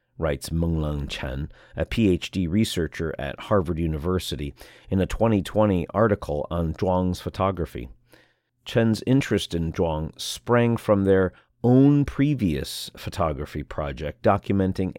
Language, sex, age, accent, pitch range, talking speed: English, male, 40-59, American, 85-110 Hz, 110 wpm